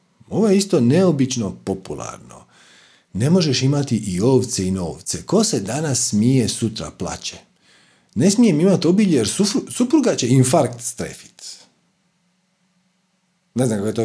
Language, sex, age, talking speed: Croatian, male, 40-59, 135 wpm